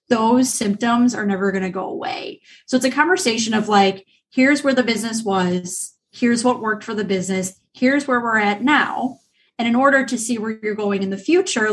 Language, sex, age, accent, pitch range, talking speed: English, female, 30-49, American, 205-245 Hz, 210 wpm